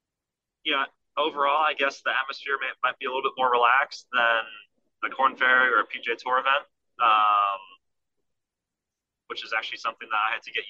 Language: English